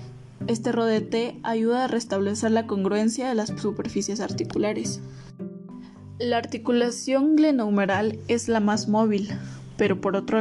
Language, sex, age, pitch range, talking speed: Spanish, female, 10-29, 195-230 Hz, 120 wpm